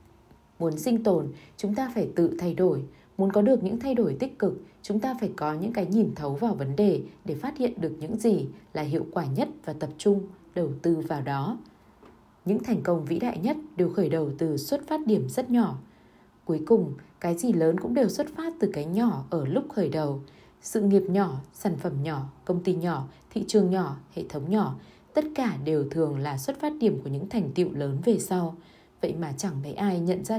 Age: 20-39